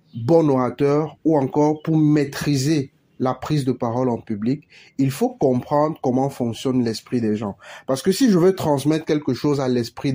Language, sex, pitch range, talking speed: French, male, 125-150 Hz, 175 wpm